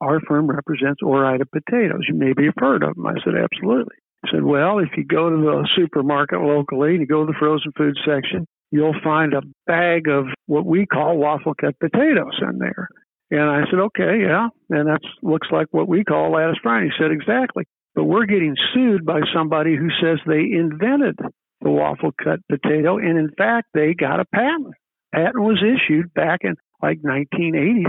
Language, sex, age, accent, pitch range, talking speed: English, male, 60-79, American, 145-170 Hz, 190 wpm